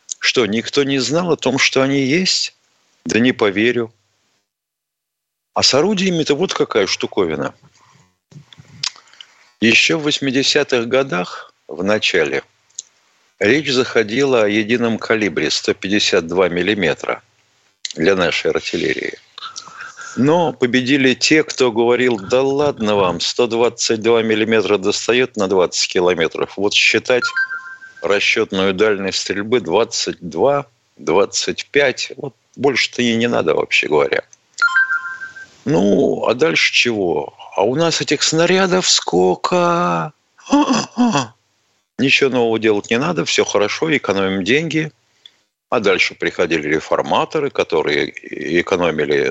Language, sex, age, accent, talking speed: Russian, male, 50-69, native, 105 wpm